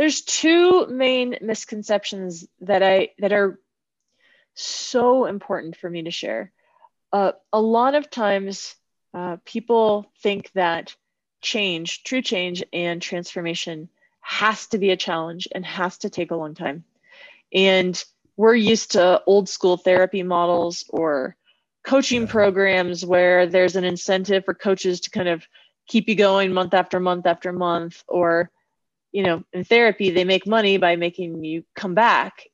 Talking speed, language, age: 150 wpm, English, 20-39